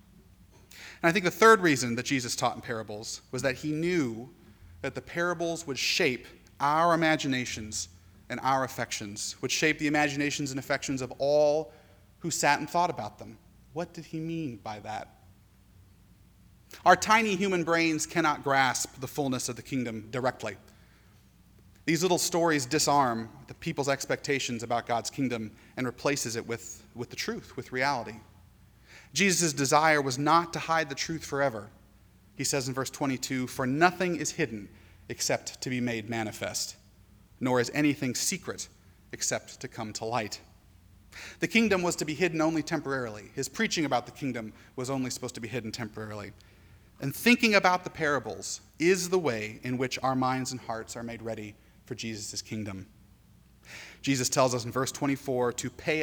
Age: 30-49